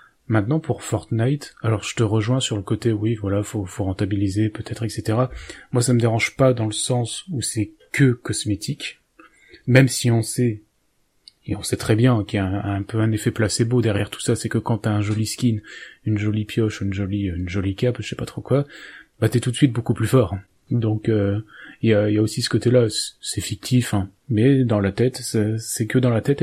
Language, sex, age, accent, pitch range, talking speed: French, male, 30-49, French, 105-125 Hz, 230 wpm